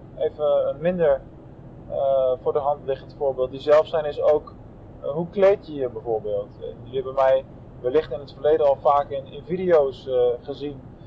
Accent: Dutch